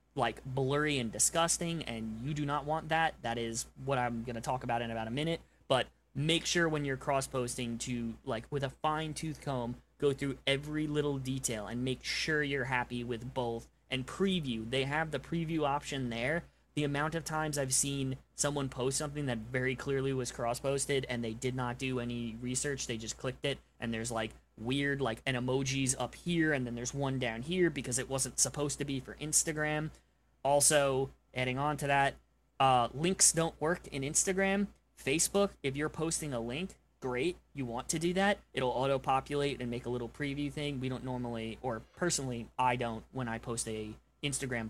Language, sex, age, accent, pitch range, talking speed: English, male, 20-39, American, 120-150 Hz, 195 wpm